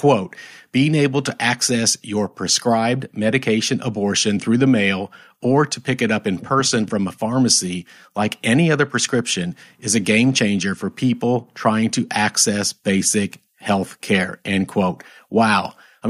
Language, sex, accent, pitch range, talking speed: English, male, American, 105-130 Hz, 155 wpm